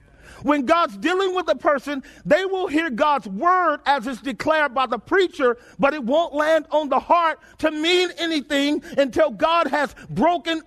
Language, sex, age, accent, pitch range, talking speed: English, male, 40-59, American, 255-330 Hz, 175 wpm